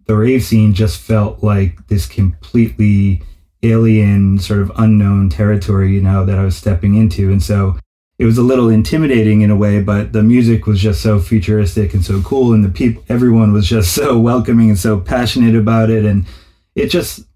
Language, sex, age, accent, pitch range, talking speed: English, male, 30-49, American, 100-110 Hz, 195 wpm